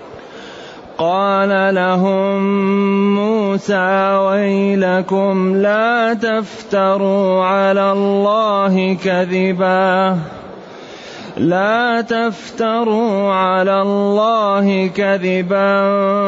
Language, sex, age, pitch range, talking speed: Arabic, male, 30-49, 185-200 Hz, 50 wpm